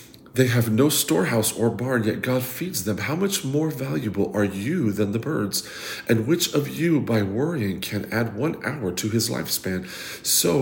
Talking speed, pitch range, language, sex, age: 185 wpm, 110-135 Hz, English, male, 40-59